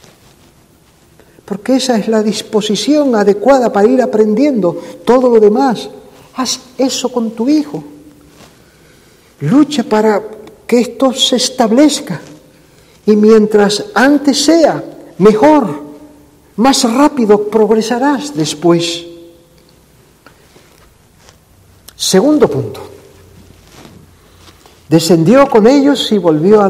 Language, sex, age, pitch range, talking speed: Spanish, male, 50-69, 165-255 Hz, 90 wpm